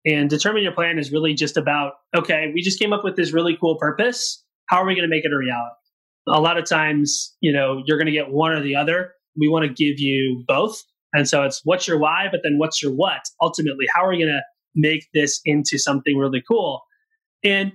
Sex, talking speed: male, 245 wpm